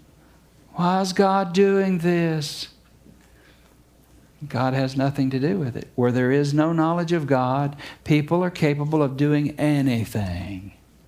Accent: American